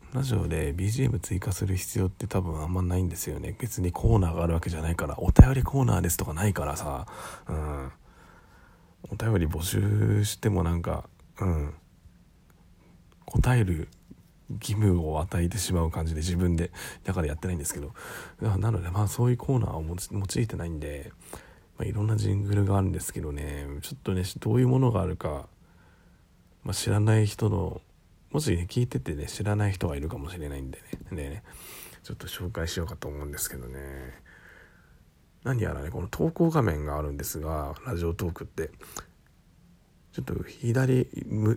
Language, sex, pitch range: Japanese, male, 80-105 Hz